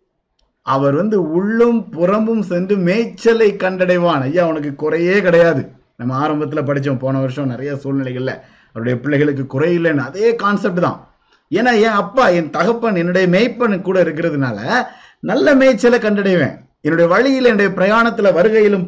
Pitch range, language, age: 150-205 Hz, Tamil, 50-69